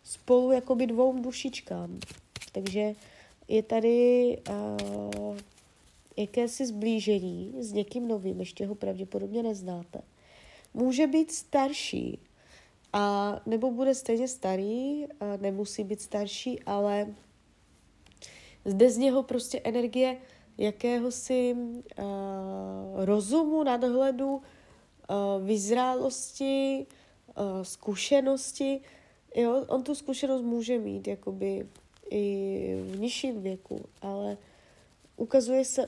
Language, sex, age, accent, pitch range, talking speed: Czech, female, 20-39, native, 195-255 Hz, 95 wpm